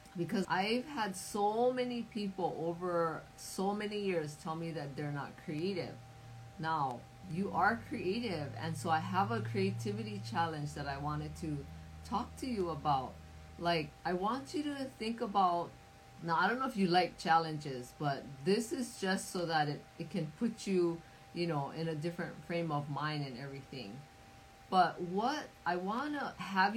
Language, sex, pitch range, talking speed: English, female, 150-195 Hz, 175 wpm